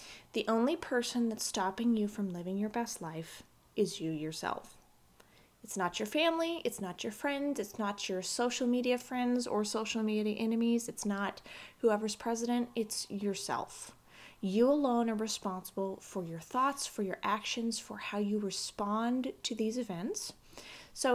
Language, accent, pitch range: English, American, 195-250 Hz